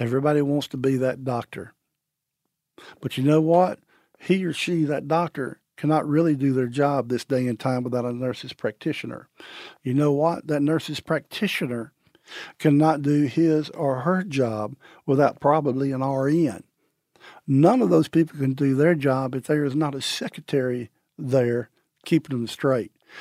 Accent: American